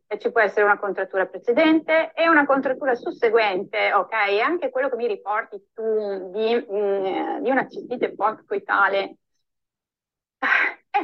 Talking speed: 125 wpm